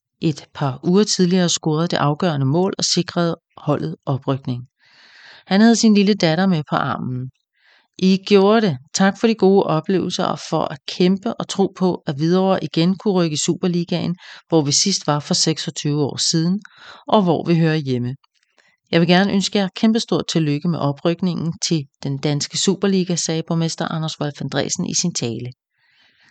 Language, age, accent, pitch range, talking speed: English, 40-59, Danish, 150-185 Hz, 175 wpm